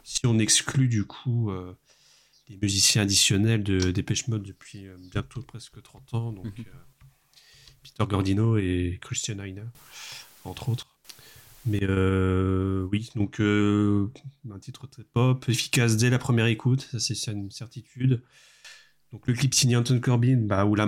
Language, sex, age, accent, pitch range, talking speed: French, male, 30-49, French, 100-125 Hz, 160 wpm